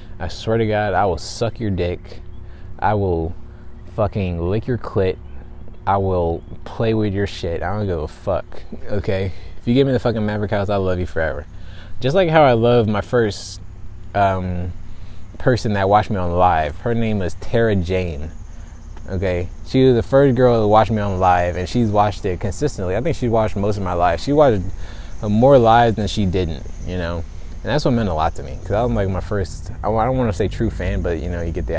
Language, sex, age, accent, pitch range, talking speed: English, male, 20-39, American, 85-110 Hz, 220 wpm